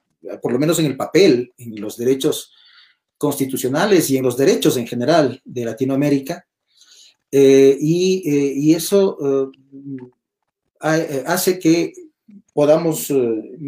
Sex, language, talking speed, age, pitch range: male, Spanish, 125 wpm, 40-59, 135-175 Hz